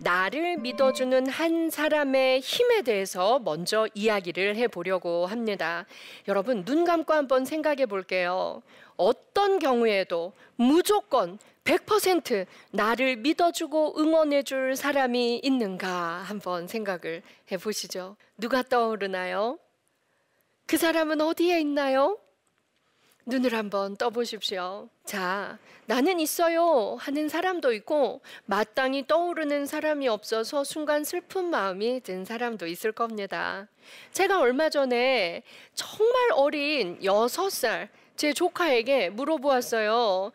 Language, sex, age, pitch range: Korean, female, 40-59, 220-315 Hz